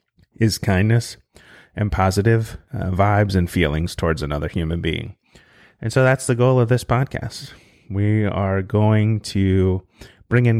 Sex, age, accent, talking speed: male, 30-49, American, 145 wpm